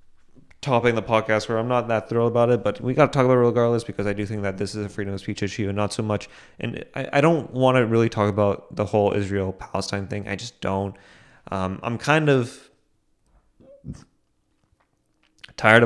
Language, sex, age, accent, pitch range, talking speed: English, male, 20-39, American, 95-115 Hz, 210 wpm